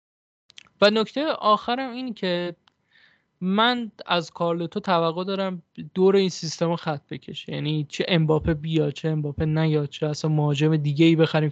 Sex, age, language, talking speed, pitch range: male, 20-39, Persian, 150 wpm, 155-190 Hz